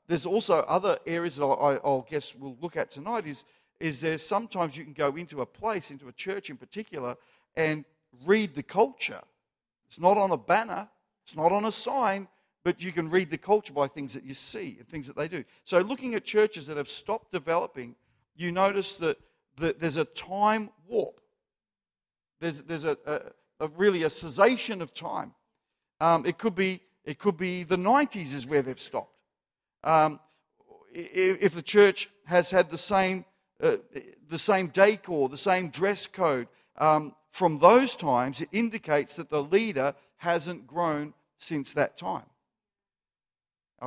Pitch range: 145-200 Hz